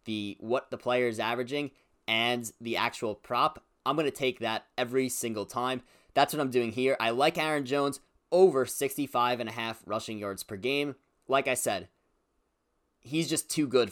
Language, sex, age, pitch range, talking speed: English, male, 20-39, 100-130 Hz, 180 wpm